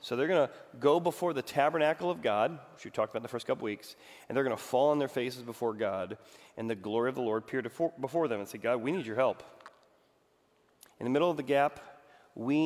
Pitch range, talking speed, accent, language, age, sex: 115-145 Hz, 245 wpm, American, English, 40-59, male